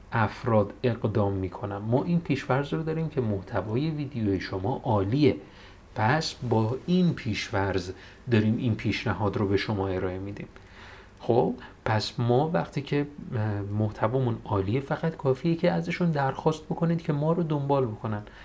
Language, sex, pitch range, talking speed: Persian, male, 105-145 Hz, 140 wpm